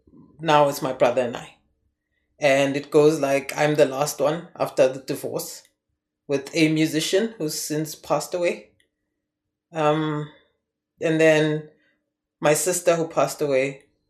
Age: 30-49